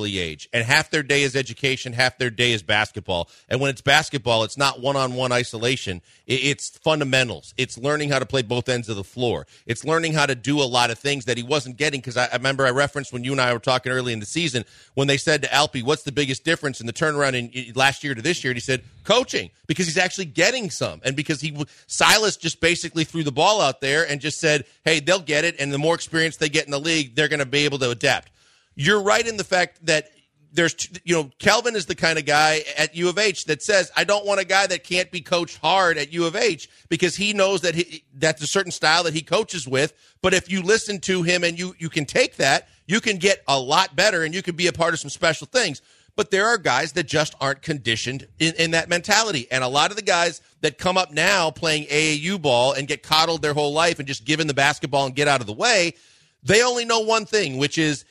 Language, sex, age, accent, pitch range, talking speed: English, male, 40-59, American, 135-170 Hz, 255 wpm